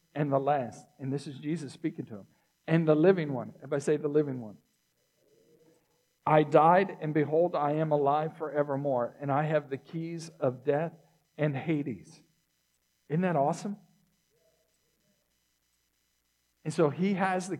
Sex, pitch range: male, 145-180 Hz